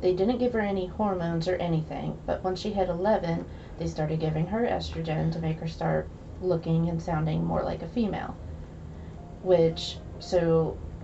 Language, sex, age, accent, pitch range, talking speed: English, female, 30-49, American, 155-185 Hz, 170 wpm